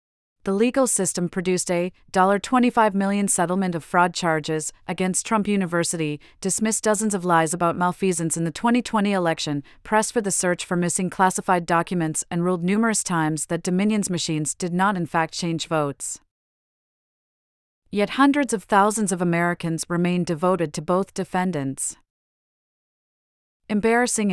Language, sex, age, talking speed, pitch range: English, female, 40-59, 140 wpm, 170-200 Hz